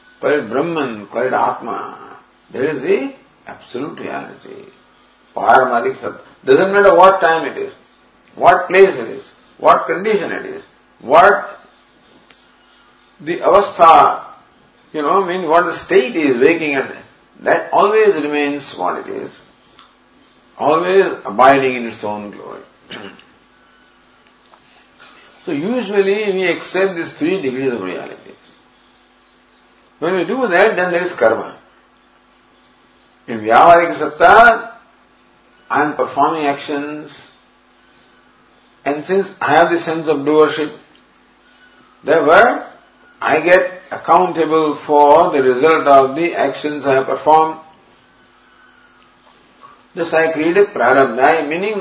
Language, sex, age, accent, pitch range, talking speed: English, male, 50-69, Indian, 145-200 Hz, 115 wpm